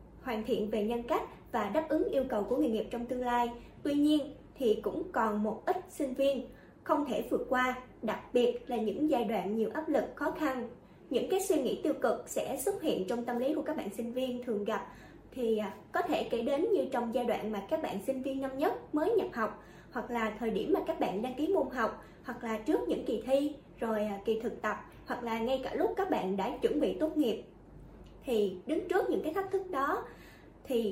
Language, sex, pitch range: Vietnamese, female, 225-315 Hz